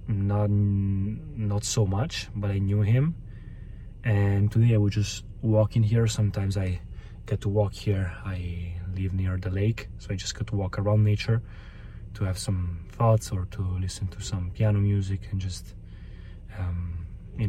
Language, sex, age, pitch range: Italian, male, 20-39, 100-110 Hz